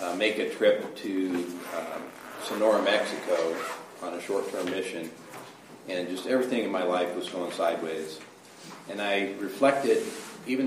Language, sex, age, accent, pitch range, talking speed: English, male, 40-59, American, 90-115 Hz, 140 wpm